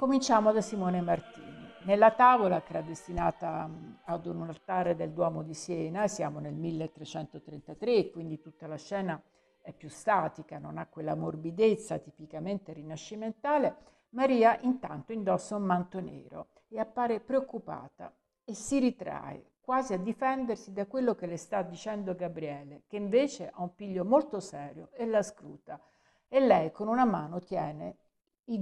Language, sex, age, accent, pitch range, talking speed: Italian, female, 60-79, native, 170-230 Hz, 150 wpm